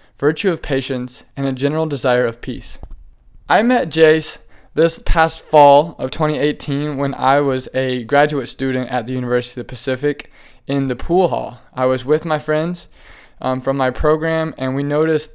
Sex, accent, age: male, American, 20-39